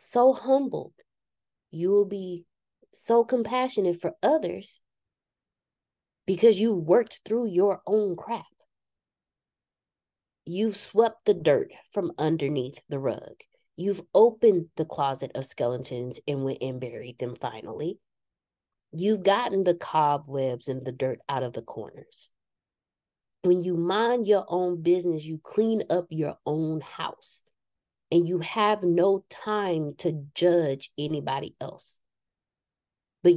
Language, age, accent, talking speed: English, 20-39, American, 125 wpm